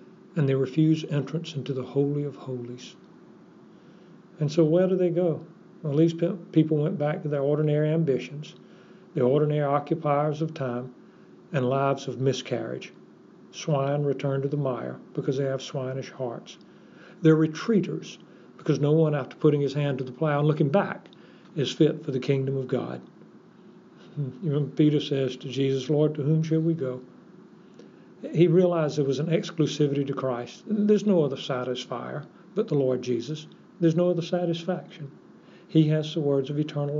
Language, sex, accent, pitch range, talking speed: English, male, American, 140-175 Hz, 165 wpm